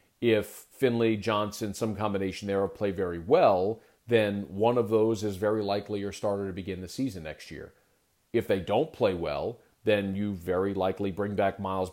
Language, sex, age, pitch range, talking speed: English, male, 40-59, 100-120 Hz, 185 wpm